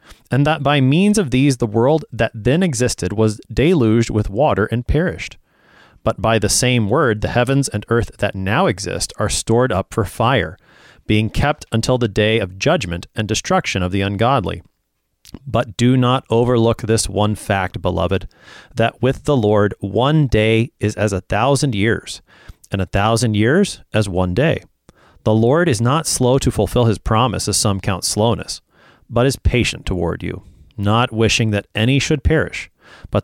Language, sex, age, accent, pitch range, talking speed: English, male, 30-49, American, 100-120 Hz, 175 wpm